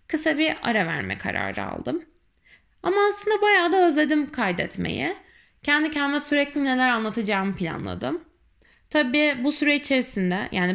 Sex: female